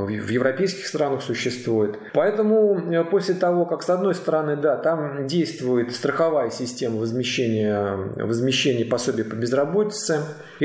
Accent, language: native, Russian